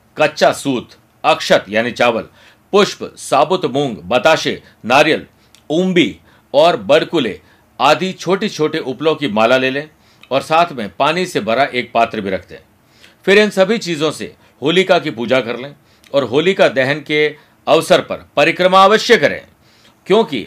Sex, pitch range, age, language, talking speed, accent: male, 130-175 Hz, 50-69, Hindi, 150 wpm, native